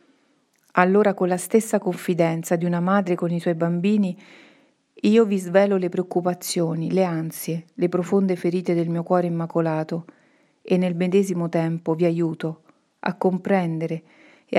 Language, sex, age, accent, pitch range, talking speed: Italian, female, 40-59, native, 170-195 Hz, 145 wpm